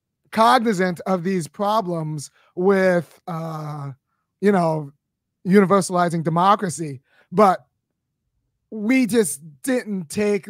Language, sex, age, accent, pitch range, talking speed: English, male, 30-49, American, 175-215 Hz, 85 wpm